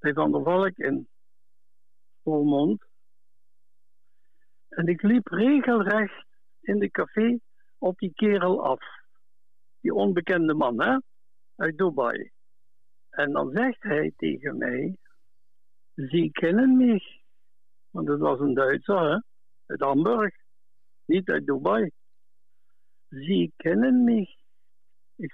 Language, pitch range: Dutch, 135-215 Hz